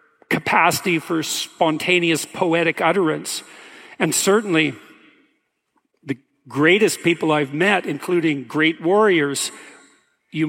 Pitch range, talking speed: 155-180 Hz, 90 wpm